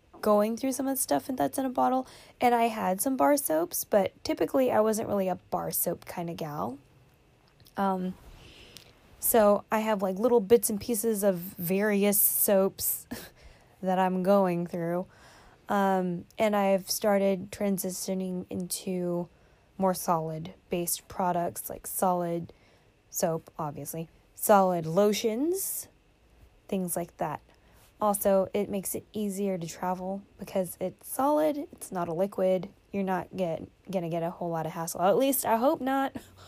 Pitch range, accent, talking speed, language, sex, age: 185-235 Hz, American, 150 wpm, English, female, 20-39